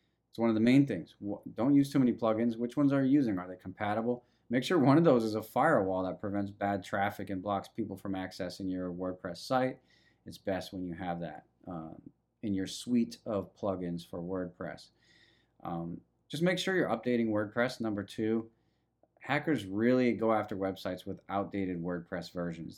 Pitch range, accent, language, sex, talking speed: 95-120 Hz, American, English, male, 185 wpm